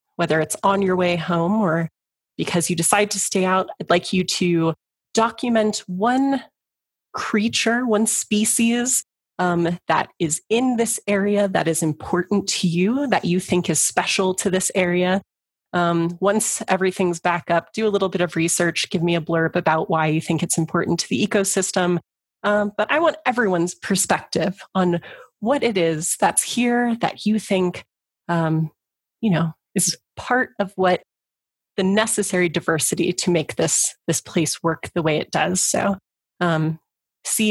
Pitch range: 170-210 Hz